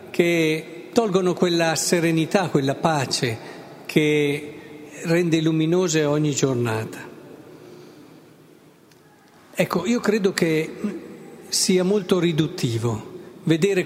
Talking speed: 80 wpm